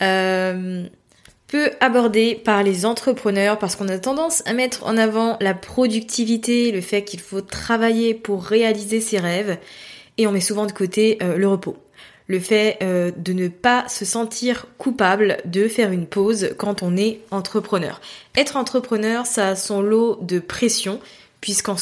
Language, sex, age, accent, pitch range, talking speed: French, female, 20-39, French, 195-235 Hz, 160 wpm